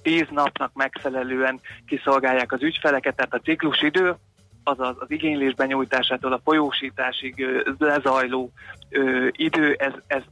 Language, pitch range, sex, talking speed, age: Hungarian, 130-145 Hz, male, 105 wpm, 30-49